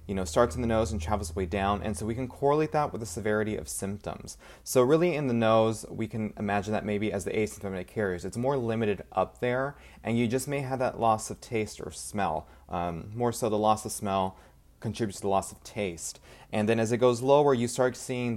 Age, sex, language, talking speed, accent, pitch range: 30-49, male, English, 240 wpm, American, 95-115 Hz